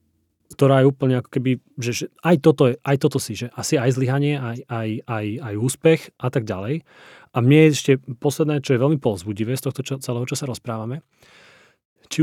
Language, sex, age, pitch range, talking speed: Slovak, male, 30-49, 110-135 Hz, 205 wpm